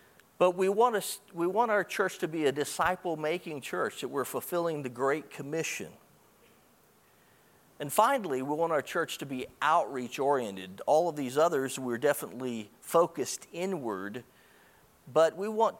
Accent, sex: American, male